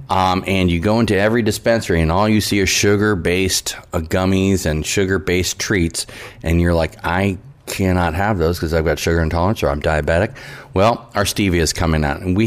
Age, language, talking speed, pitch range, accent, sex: 30-49, English, 195 wpm, 85-115 Hz, American, male